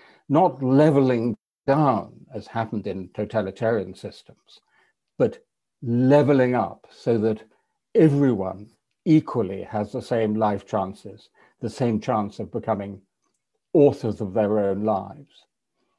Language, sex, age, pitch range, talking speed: English, male, 60-79, 105-130 Hz, 115 wpm